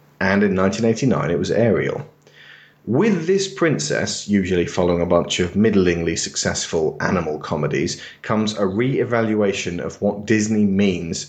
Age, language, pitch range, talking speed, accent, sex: 30-49, English, 95-110 Hz, 135 wpm, British, male